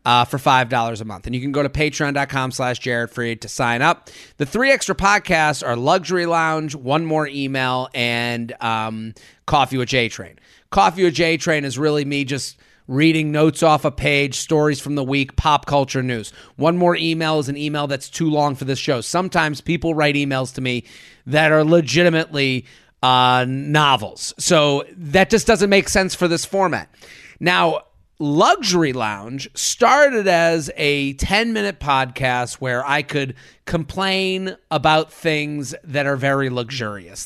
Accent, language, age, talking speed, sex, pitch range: American, English, 30-49, 165 wpm, male, 130-165 Hz